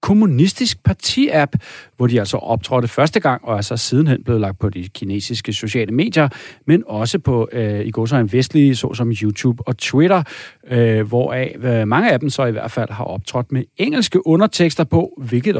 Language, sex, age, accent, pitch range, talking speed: Danish, male, 40-59, native, 110-145 Hz, 190 wpm